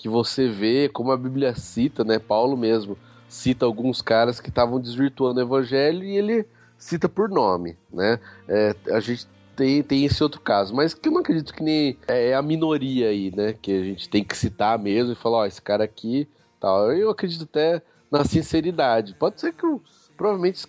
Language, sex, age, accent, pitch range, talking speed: Portuguese, male, 30-49, Brazilian, 110-145 Hz, 190 wpm